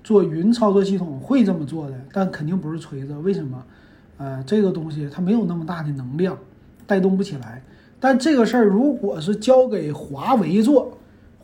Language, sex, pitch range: Chinese, male, 145-200 Hz